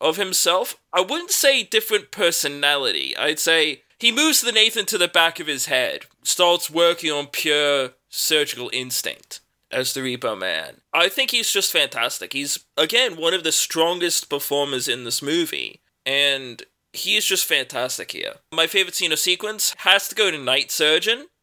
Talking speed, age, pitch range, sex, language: 170 wpm, 20-39, 150-250 Hz, male, English